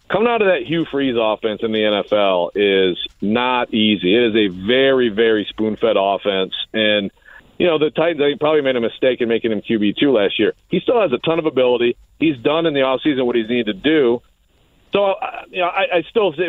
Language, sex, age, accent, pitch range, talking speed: English, male, 50-69, American, 125-170 Hz, 220 wpm